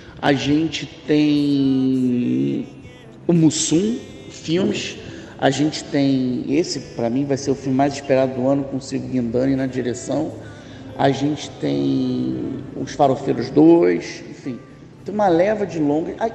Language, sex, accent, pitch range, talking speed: Portuguese, male, Brazilian, 135-160 Hz, 140 wpm